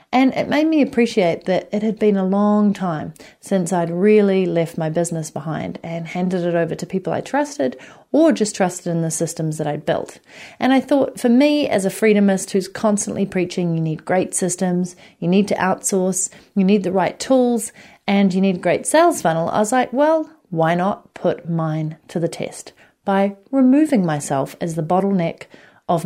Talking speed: 195 wpm